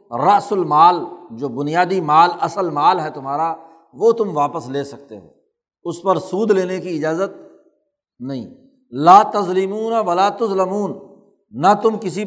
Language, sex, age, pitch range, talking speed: Urdu, male, 60-79, 150-200 Hz, 145 wpm